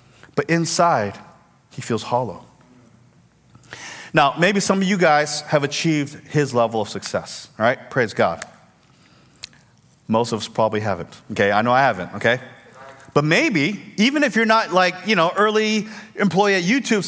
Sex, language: male, English